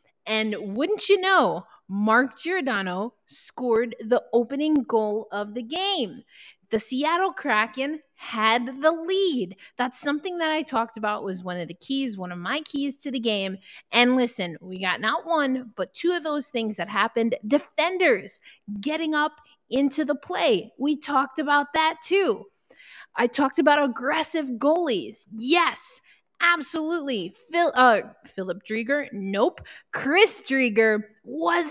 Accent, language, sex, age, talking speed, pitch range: American, English, female, 20-39, 145 wpm, 230-315 Hz